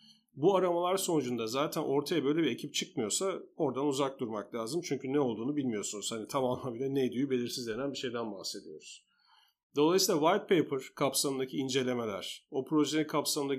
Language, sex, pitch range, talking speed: Turkish, male, 125-170 Hz, 150 wpm